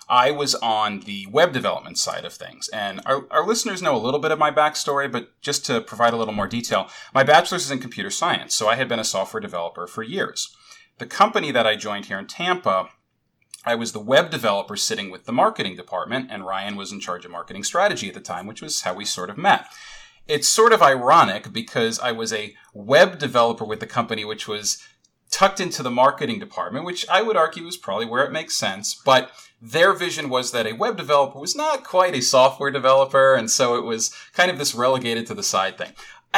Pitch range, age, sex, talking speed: 110-150 Hz, 30-49, male, 225 wpm